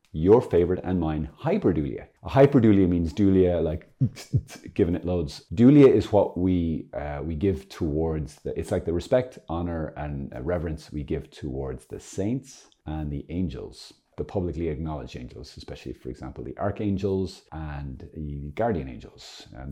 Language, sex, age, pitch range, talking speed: English, male, 30-49, 80-105 Hz, 150 wpm